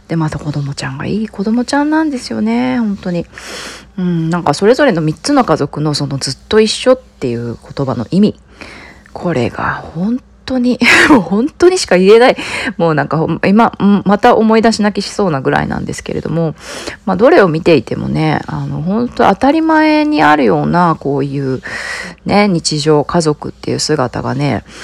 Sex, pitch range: female, 150-230 Hz